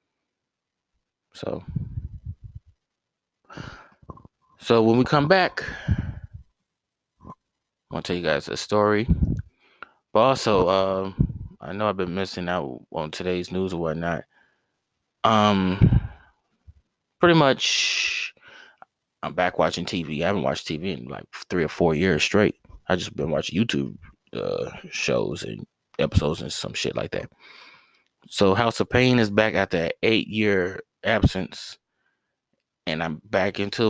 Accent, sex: American, male